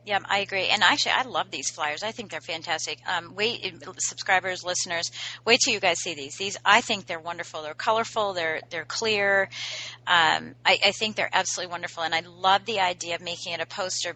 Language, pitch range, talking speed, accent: English, 170-210 Hz, 210 wpm, American